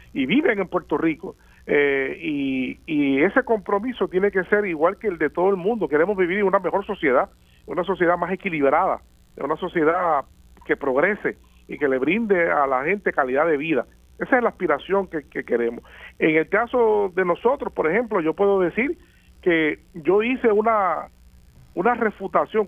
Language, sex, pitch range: Spanish, male, 155-215 Hz